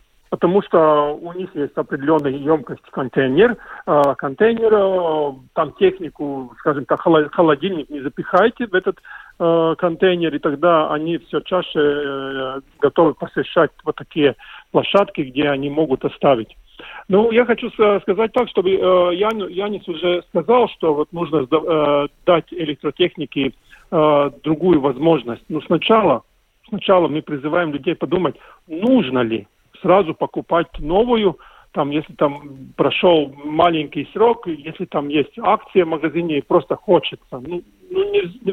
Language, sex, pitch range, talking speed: Russian, male, 150-195 Hz, 120 wpm